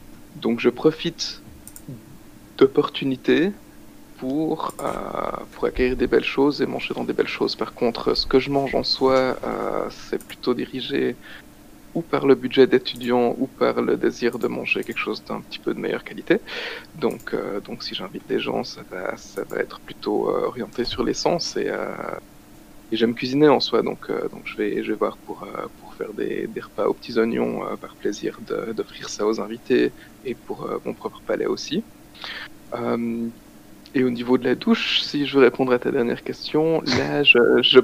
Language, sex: French, male